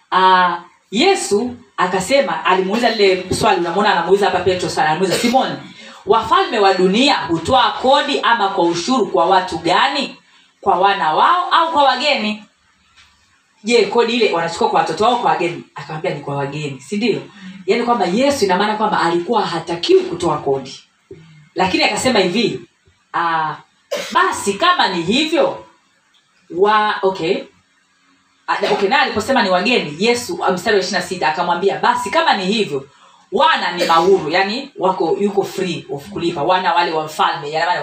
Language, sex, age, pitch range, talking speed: Swahili, female, 40-59, 170-235 Hz, 145 wpm